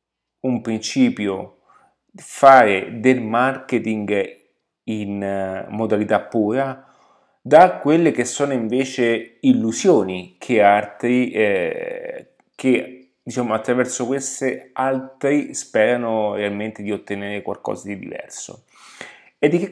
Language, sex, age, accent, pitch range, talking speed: Italian, male, 30-49, native, 105-130 Hz, 95 wpm